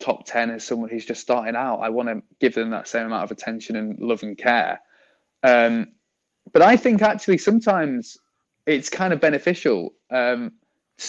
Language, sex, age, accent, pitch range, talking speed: English, male, 20-39, British, 120-155 Hz, 180 wpm